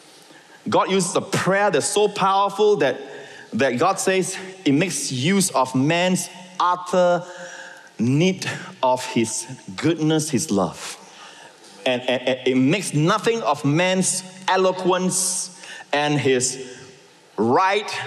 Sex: male